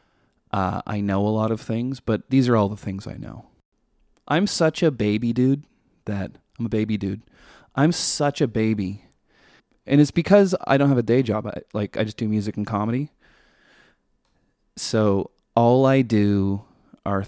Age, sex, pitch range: 20-39, male, 100-145 Hz